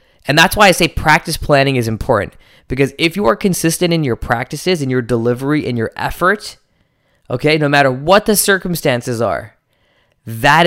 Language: English